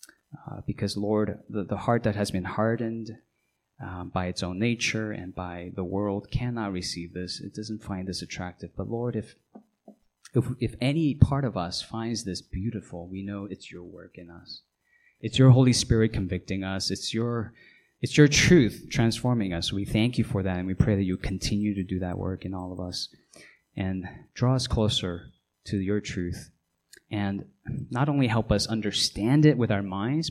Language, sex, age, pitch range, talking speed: English, male, 20-39, 95-120 Hz, 190 wpm